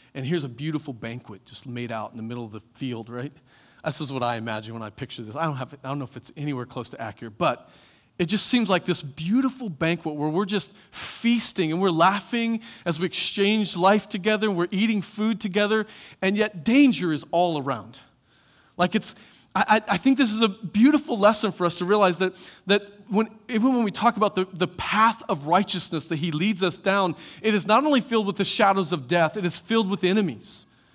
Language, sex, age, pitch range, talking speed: English, male, 40-59, 160-220 Hz, 220 wpm